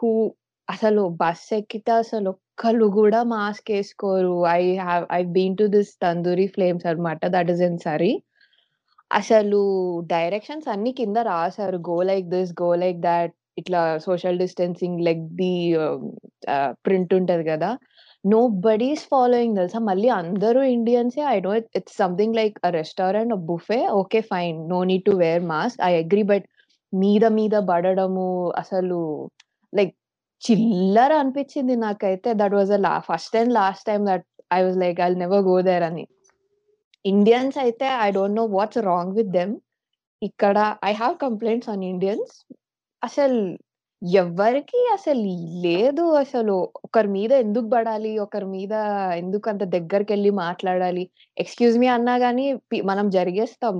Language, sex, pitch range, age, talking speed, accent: Telugu, female, 180-230 Hz, 20-39, 150 wpm, native